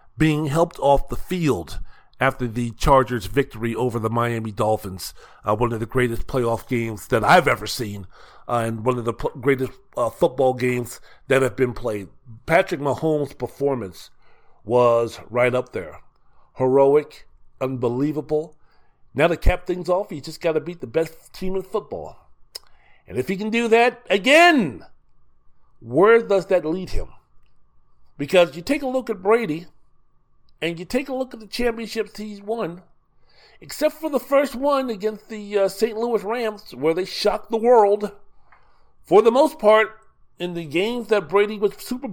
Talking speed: 170 wpm